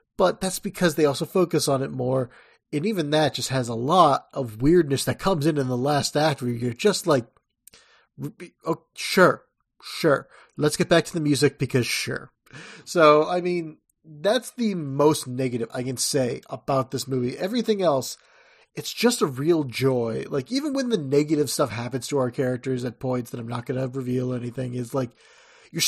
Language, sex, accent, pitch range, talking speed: English, male, American, 130-160 Hz, 190 wpm